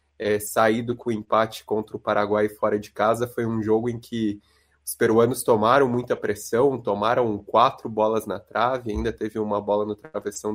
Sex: male